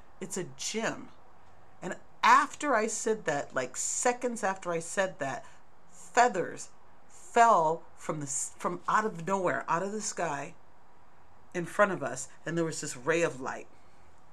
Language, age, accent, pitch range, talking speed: English, 40-59, American, 155-215 Hz, 155 wpm